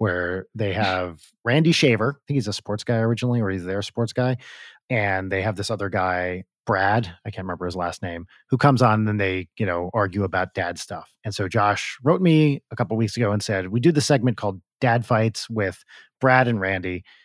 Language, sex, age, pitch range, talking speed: English, male, 30-49, 95-130 Hz, 220 wpm